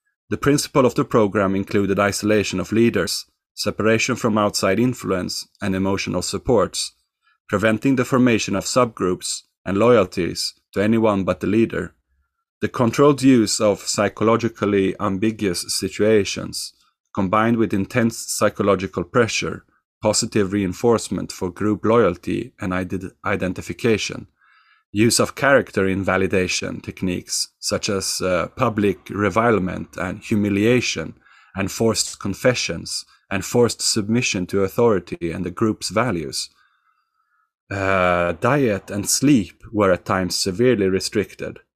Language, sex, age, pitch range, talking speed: English, male, 30-49, 95-115 Hz, 115 wpm